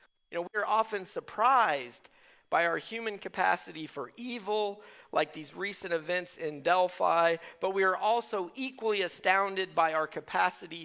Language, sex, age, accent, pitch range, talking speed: English, male, 40-59, American, 165-210 Hz, 150 wpm